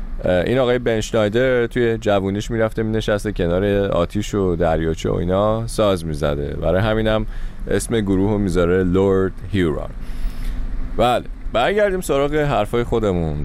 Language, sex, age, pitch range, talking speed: Persian, male, 30-49, 85-115 Hz, 145 wpm